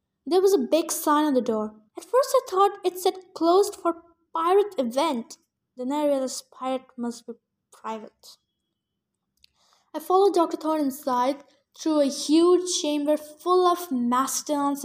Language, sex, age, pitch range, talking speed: English, female, 10-29, 260-350 Hz, 150 wpm